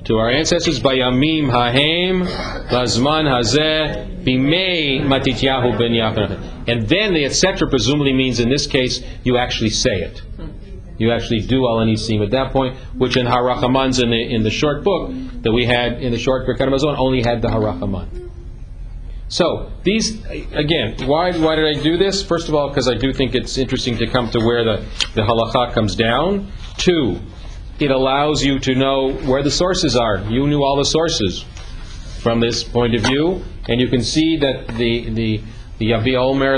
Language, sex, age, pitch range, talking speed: English, male, 40-59, 115-140 Hz, 170 wpm